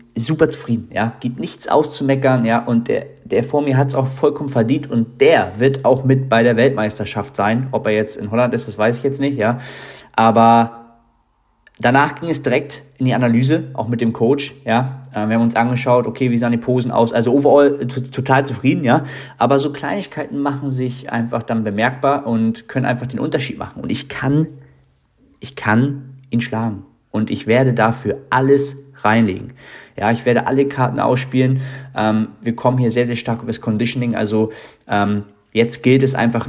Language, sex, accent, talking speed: German, male, German, 190 wpm